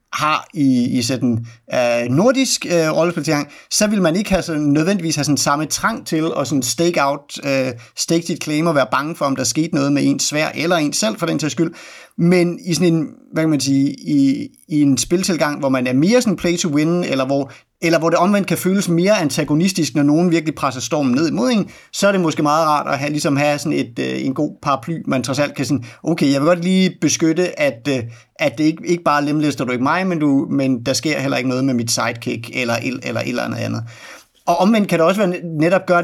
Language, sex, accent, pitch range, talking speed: Danish, male, native, 140-180 Hz, 235 wpm